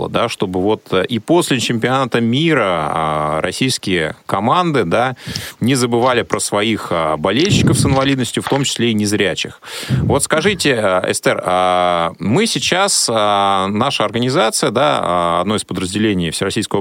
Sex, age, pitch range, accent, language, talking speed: male, 30-49, 100-135 Hz, native, Russian, 115 wpm